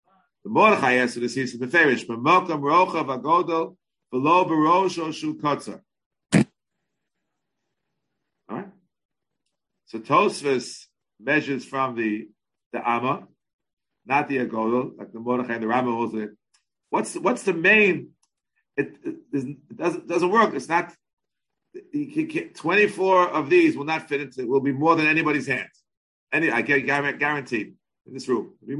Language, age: English, 50-69